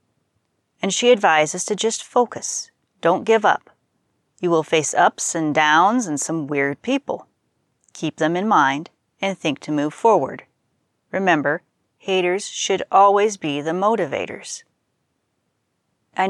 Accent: American